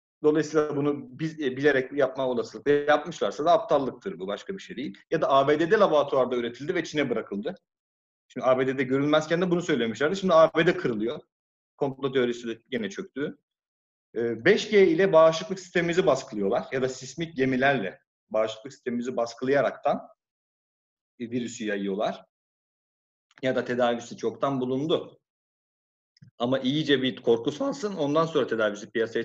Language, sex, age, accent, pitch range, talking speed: Turkish, male, 40-59, native, 120-160 Hz, 135 wpm